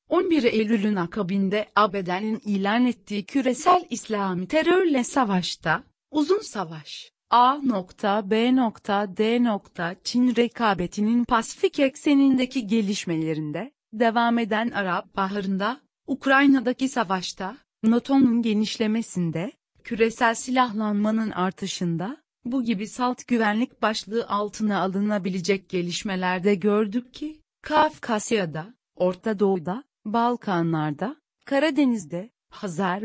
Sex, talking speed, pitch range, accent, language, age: female, 85 wpm, 195-245 Hz, native, Turkish, 40-59